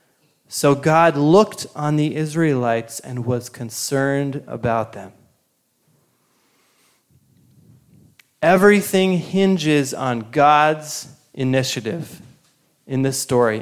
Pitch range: 130-175 Hz